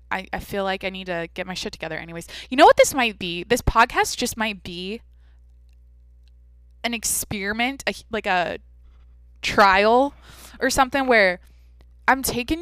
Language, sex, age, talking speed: English, female, 20-39, 155 wpm